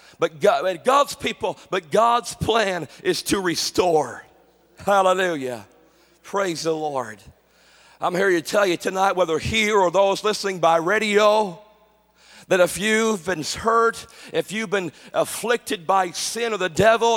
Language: English